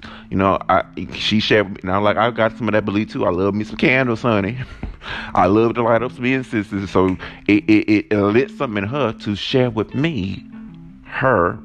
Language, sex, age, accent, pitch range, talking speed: English, male, 30-49, American, 95-120 Hz, 225 wpm